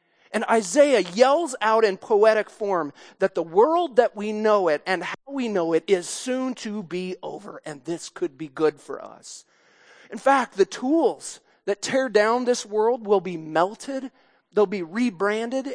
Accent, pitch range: American, 165-220 Hz